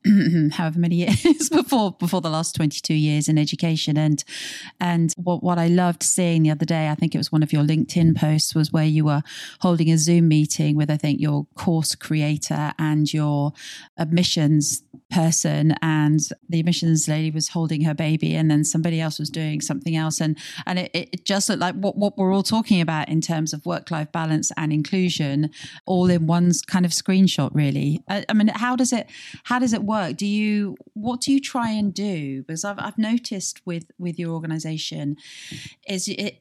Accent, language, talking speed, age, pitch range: British, English, 195 wpm, 30-49, 155-190 Hz